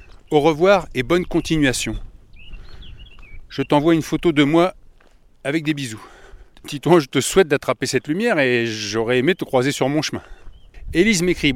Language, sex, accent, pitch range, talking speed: French, male, French, 120-155 Hz, 160 wpm